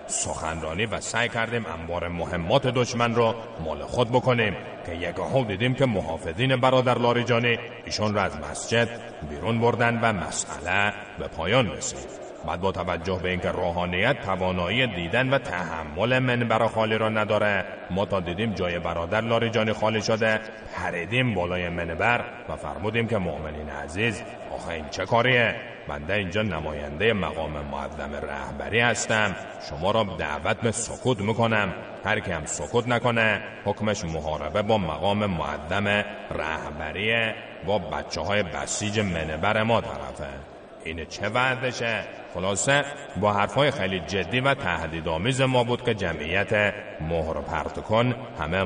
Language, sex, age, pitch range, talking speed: Persian, male, 30-49, 85-115 Hz, 140 wpm